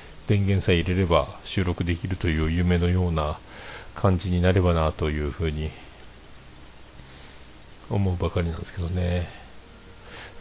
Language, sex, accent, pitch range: Japanese, male, native, 80-105 Hz